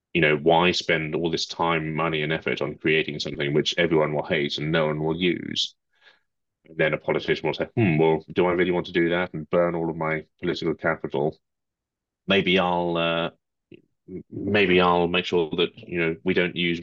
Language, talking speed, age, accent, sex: English, 205 wpm, 30-49, British, male